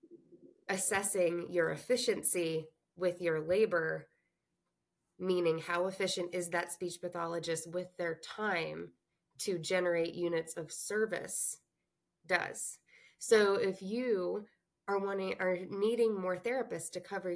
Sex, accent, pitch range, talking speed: female, American, 170-200 Hz, 115 wpm